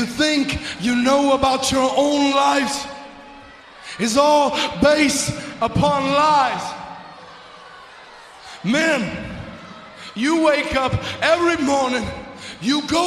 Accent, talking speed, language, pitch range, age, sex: American, 90 wpm, English, 265-310 Hz, 30-49, male